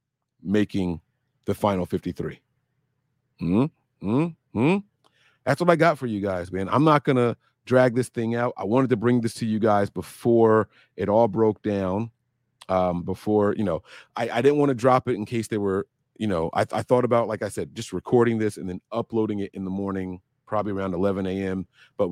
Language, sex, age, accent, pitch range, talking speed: English, male, 40-59, American, 95-125 Hz, 200 wpm